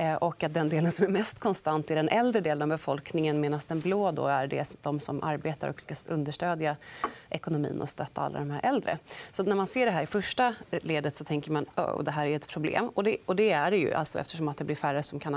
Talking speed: 260 wpm